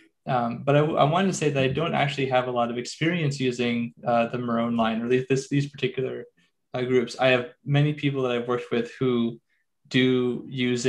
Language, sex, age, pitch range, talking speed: English, male, 20-39, 120-135 Hz, 210 wpm